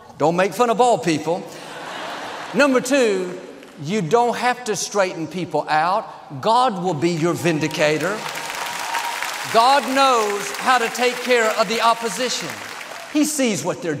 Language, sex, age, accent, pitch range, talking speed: English, male, 50-69, American, 160-230 Hz, 140 wpm